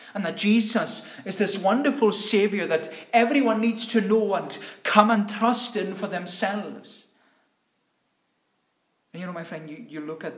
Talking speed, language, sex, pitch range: 160 wpm, English, male, 140-225 Hz